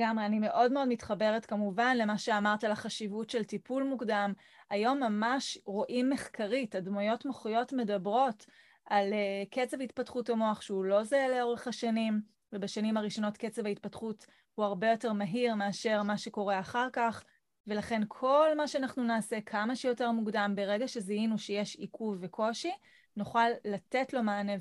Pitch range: 210-240 Hz